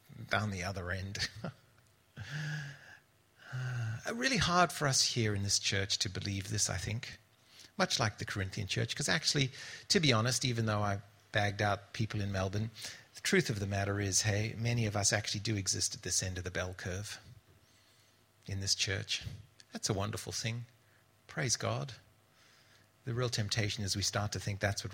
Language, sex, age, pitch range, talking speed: English, male, 40-59, 100-125 Hz, 180 wpm